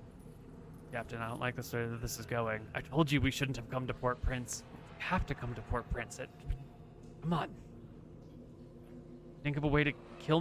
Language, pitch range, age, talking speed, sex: English, 120-160 Hz, 30-49, 210 wpm, male